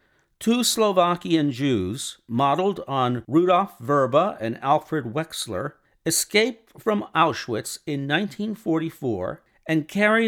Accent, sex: American, male